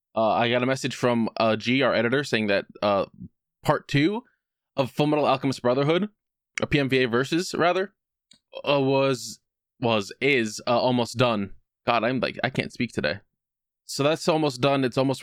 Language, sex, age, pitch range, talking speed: English, male, 20-39, 115-150 Hz, 170 wpm